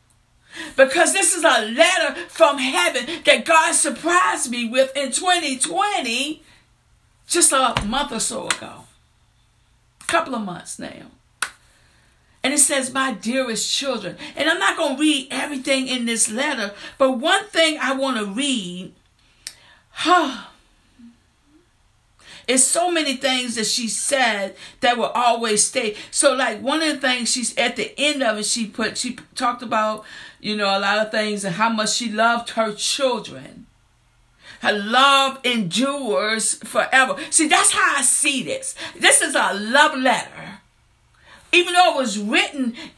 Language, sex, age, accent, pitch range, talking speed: English, female, 50-69, American, 225-305 Hz, 155 wpm